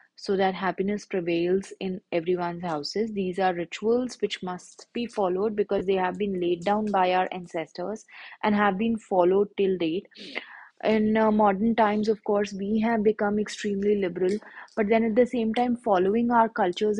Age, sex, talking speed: 20-39, female, 175 wpm